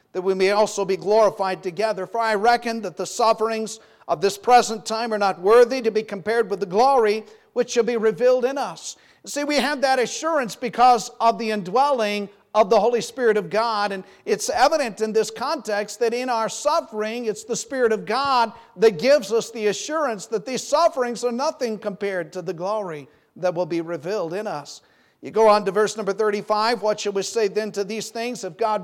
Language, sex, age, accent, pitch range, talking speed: English, male, 50-69, American, 190-235 Hz, 205 wpm